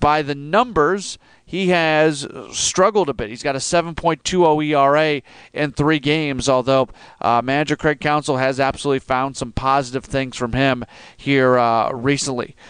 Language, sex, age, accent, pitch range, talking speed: English, male, 40-59, American, 135-160 Hz, 150 wpm